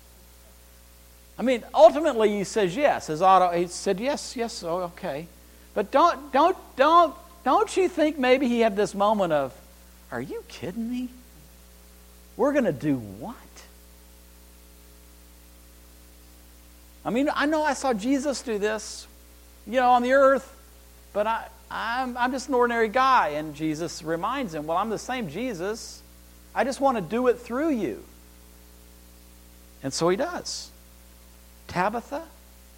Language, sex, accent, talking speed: English, male, American, 145 wpm